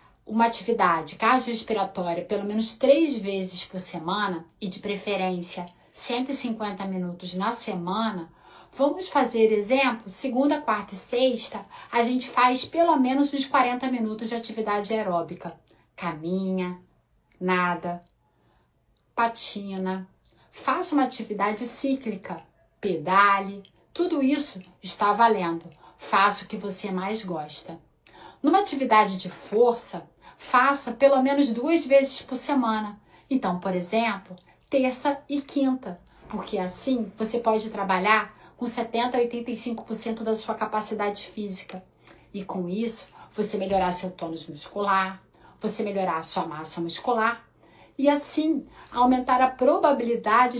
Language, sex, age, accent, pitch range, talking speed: Portuguese, female, 30-49, Brazilian, 185-250 Hz, 120 wpm